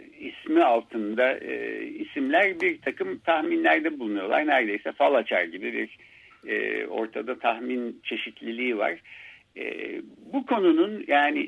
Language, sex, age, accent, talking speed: Turkish, male, 60-79, native, 115 wpm